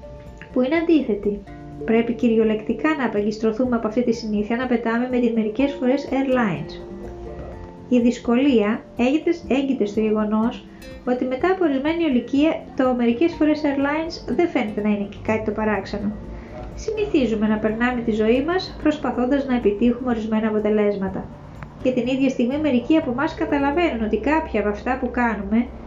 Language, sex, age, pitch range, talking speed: Greek, female, 20-39, 225-290 Hz, 150 wpm